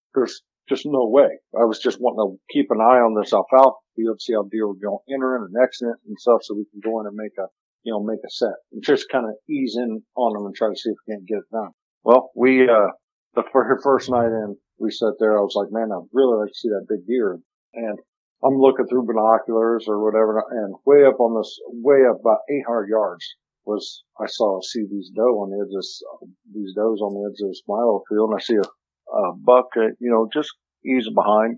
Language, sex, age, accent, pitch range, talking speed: English, male, 50-69, American, 105-135 Hz, 240 wpm